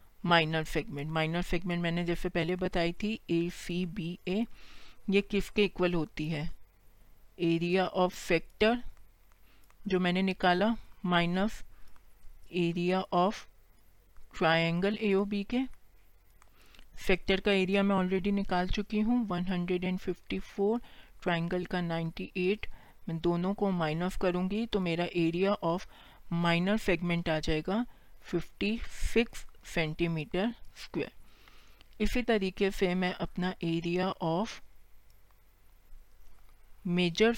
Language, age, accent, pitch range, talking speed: Hindi, 40-59, native, 160-195 Hz, 105 wpm